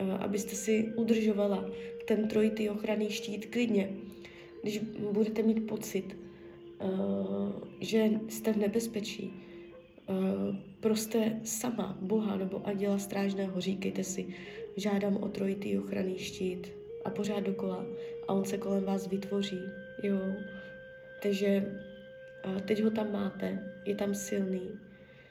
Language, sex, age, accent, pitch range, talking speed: Czech, female, 20-39, native, 190-220 Hz, 110 wpm